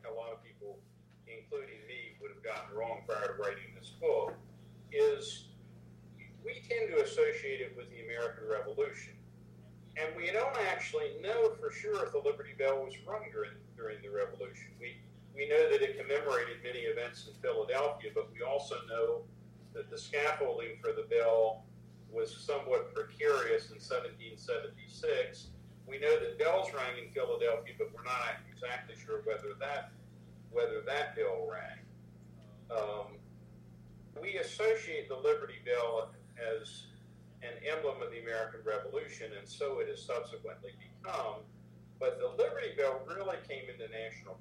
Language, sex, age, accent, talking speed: English, male, 50-69, American, 150 wpm